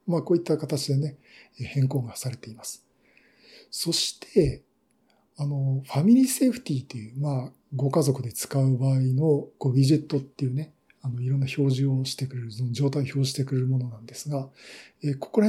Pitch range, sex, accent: 130-160 Hz, male, native